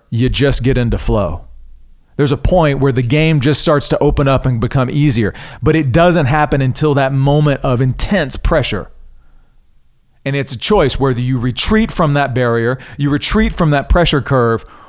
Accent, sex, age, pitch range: American, male, 40-59, 105-140 Hz